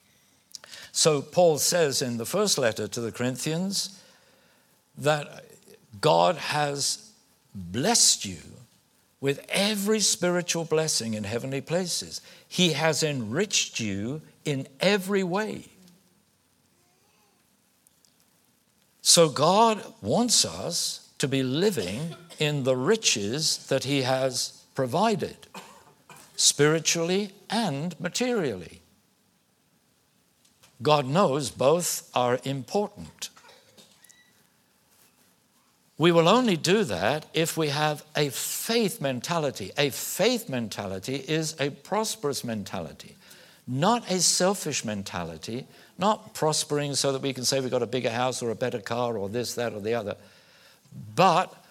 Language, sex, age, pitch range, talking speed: English, male, 60-79, 130-190 Hz, 110 wpm